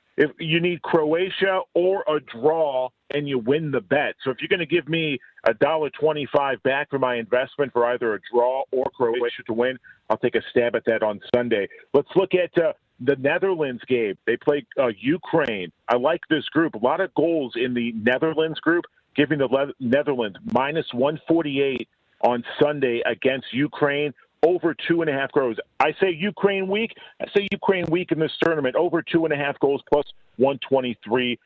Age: 40-59